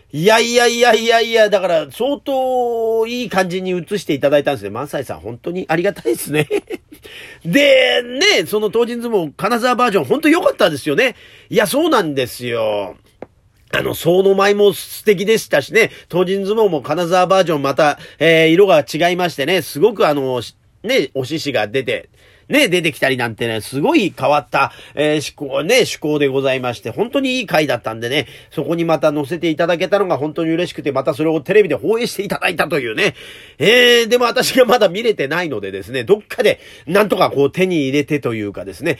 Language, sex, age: Japanese, male, 40-59